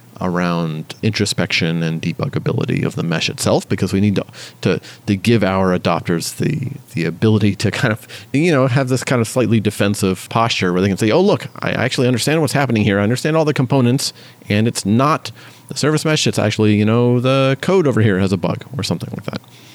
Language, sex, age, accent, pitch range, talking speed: English, male, 40-59, American, 100-125 Hz, 215 wpm